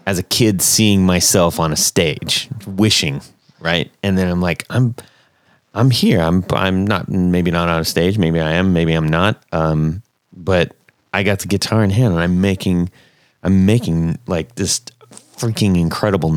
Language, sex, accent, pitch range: English, male, American, 85-105 Hz